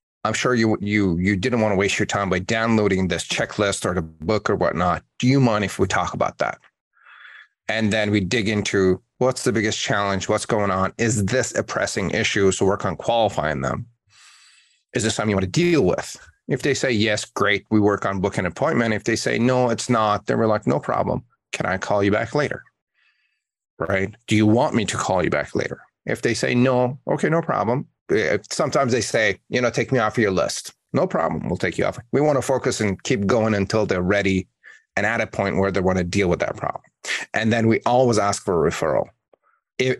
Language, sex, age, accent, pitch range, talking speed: English, male, 30-49, American, 100-125 Hz, 220 wpm